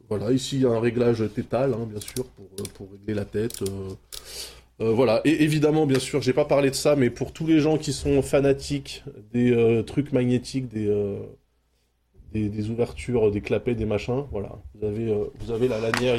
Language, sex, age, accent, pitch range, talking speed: French, male, 20-39, French, 105-140 Hz, 210 wpm